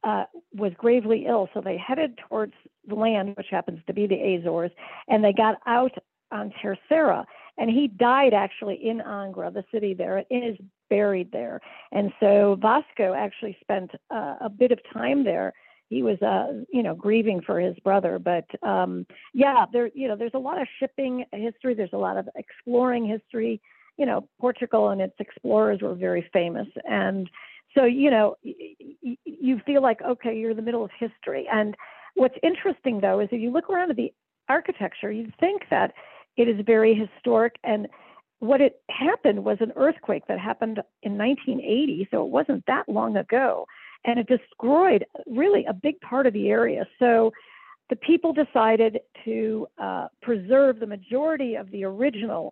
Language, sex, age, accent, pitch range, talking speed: English, female, 50-69, American, 205-270 Hz, 175 wpm